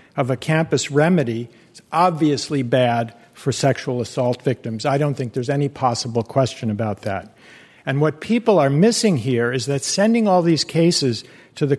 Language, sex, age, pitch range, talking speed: English, male, 60-79, 130-165 Hz, 175 wpm